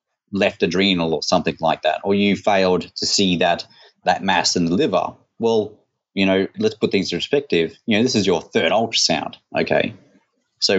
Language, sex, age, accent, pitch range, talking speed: English, male, 30-49, Australian, 90-105 Hz, 190 wpm